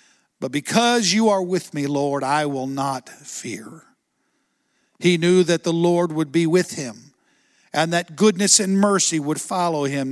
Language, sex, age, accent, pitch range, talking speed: English, male, 50-69, American, 140-175 Hz, 165 wpm